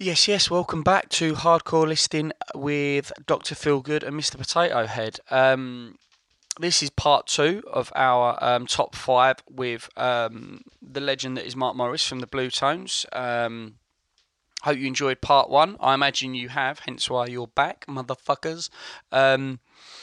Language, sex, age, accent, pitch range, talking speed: English, male, 20-39, British, 125-150 Hz, 155 wpm